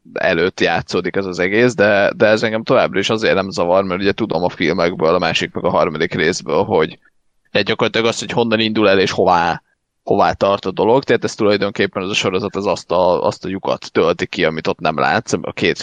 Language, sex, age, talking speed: Hungarian, male, 30-49, 225 wpm